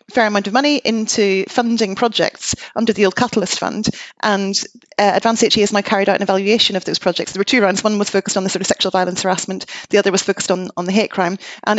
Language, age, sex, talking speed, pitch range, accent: English, 30-49, female, 250 wpm, 195-225 Hz, British